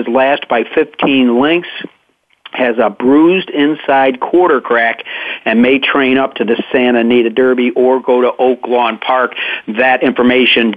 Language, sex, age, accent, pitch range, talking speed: English, male, 50-69, American, 125-145 Hz, 145 wpm